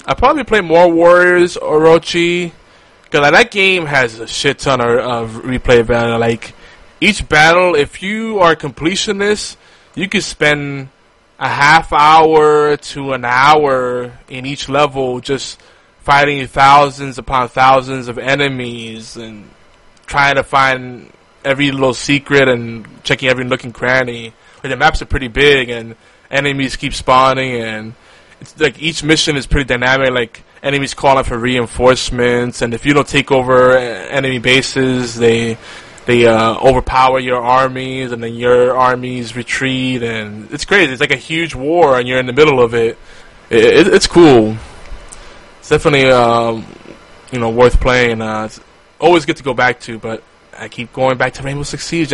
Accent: American